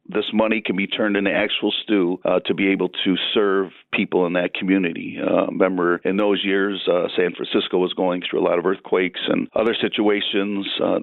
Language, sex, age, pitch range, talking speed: English, male, 50-69, 95-110 Hz, 200 wpm